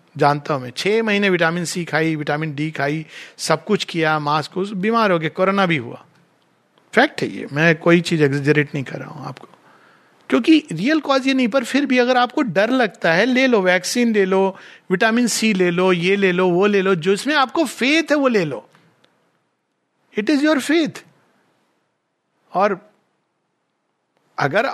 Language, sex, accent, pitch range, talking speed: Hindi, male, native, 160-235 Hz, 180 wpm